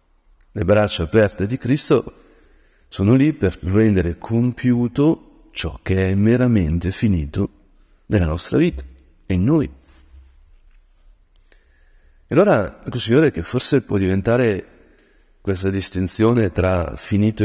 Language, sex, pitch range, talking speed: Italian, male, 85-115 Hz, 110 wpm